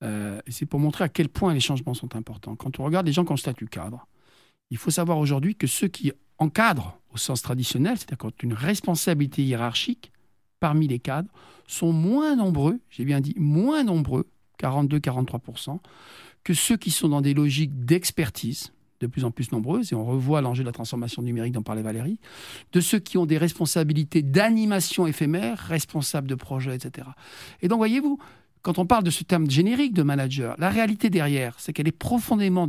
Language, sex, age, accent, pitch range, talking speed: French, male, 50-69, French, 125-175 Hz, 190 wpm